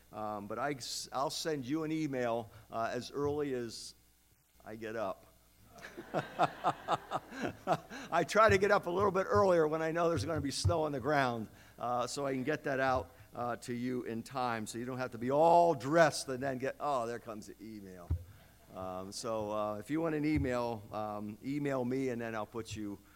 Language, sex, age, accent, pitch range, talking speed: English, male, 50-69, American, 115-150 Hz, 200 wpm